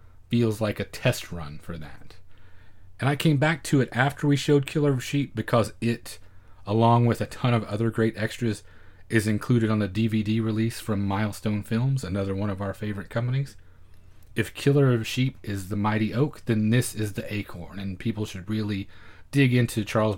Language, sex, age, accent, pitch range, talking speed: English, male, 30-49, American, 95-125 Hz, 190 wpm